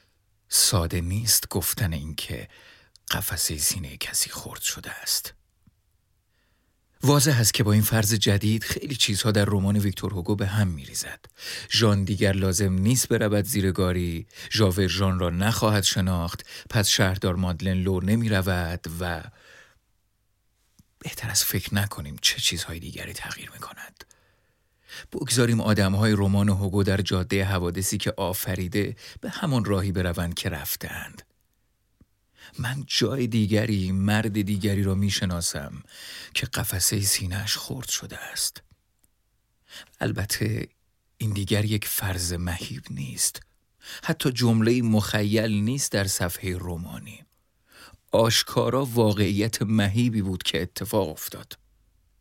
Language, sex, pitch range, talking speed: Persian, male, 95-110 Hz, 115 wpm